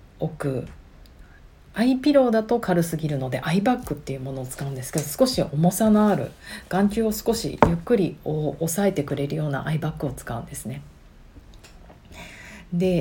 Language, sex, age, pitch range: Japanese, female, 40-59, 140-195 Hz